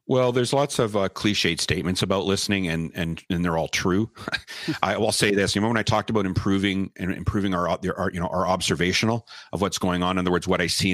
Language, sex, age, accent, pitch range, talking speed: English, male, 40-59, American, 90-110 Hz, 245 wpm